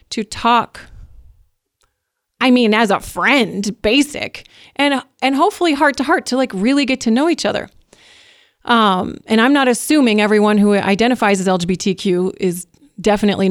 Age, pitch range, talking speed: 30-49, 200-250 Hz, 140 wpm